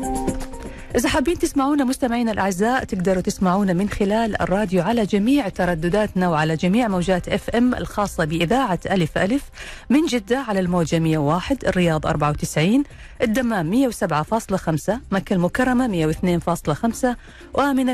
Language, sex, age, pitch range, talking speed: Arabic, female, 40-59, 175-240 Hz, 115 wpm